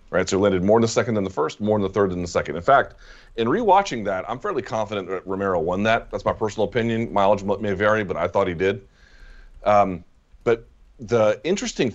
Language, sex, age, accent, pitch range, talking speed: English, male, 30-49, American, 95-125 Hz, 225 wpm